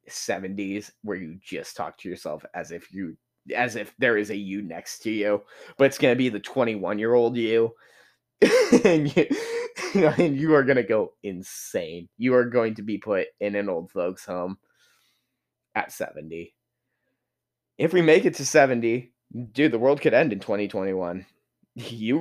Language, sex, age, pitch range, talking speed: English, male, 20-39, 105-155 Hz, 175 wpm